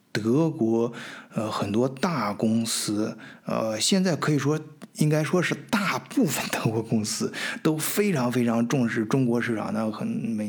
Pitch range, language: 115-145 Hz, Chinese